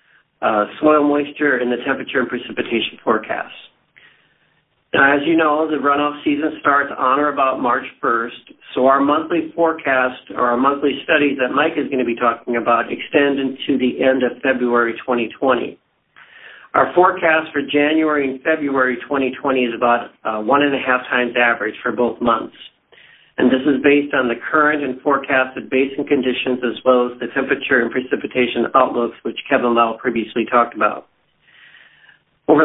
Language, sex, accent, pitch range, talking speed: English, male, American, 120-145 Hz, 165 wpm